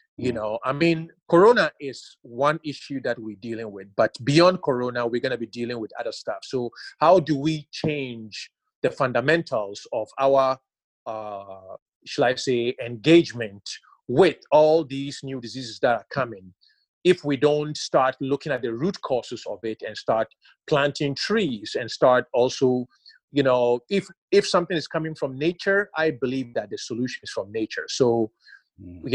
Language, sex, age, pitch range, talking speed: English, male, 30-49, 120-160 Hz, 170 wpm